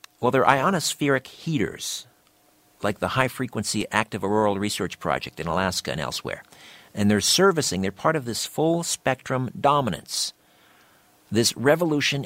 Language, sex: English, male